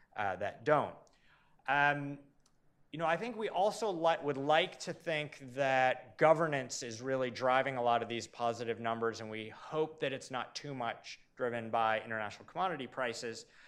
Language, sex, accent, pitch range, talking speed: English, male, American, 125-155 Hz, 170 wpm